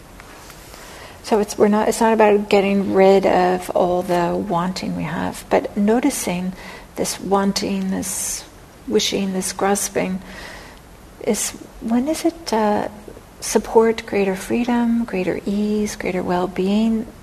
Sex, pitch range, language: female, 185-230 Hz, English